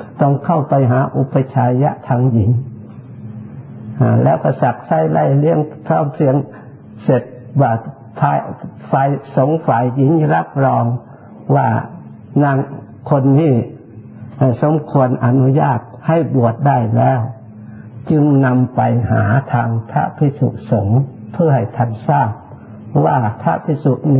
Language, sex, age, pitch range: Thai, male, 60-79, 120-140 Hz